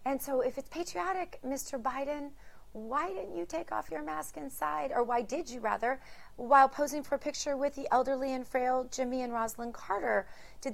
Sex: female